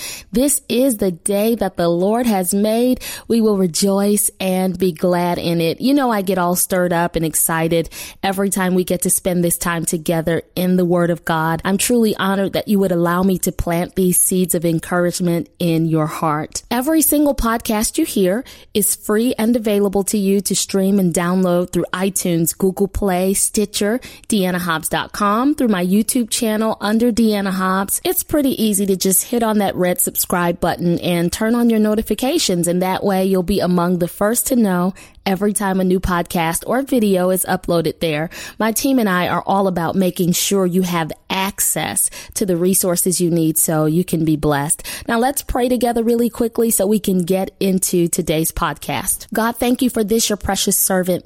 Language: English